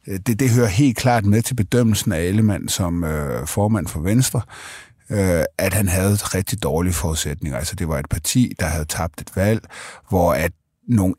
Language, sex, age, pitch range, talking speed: Danish, male, 30-49, 85-115 Hz, 190 wpm